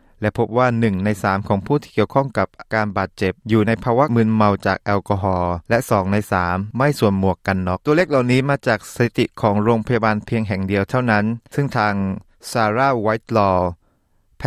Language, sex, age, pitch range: Thai, male, 20-39, 95-125 Hz